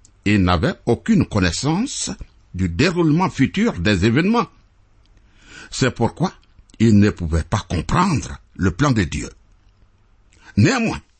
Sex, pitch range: male, 100-165 Hz